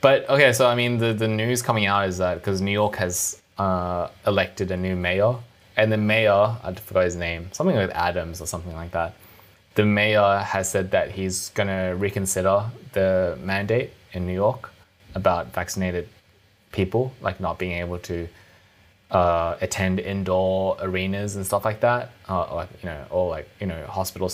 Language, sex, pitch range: English, male, 95-105 Hz